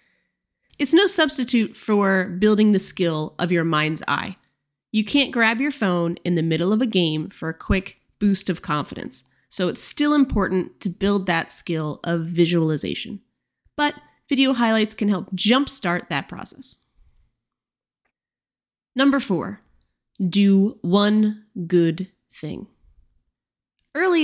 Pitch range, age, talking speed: 175-225 Hz, 20-39, 130 wpm